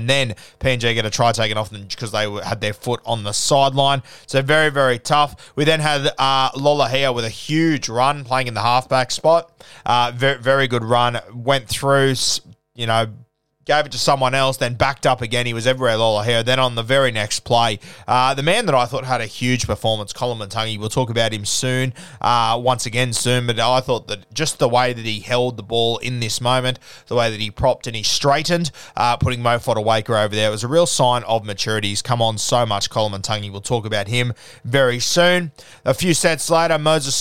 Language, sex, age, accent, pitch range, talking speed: English, male, 20-39, Australian, 110-135 Hz, 225 wpm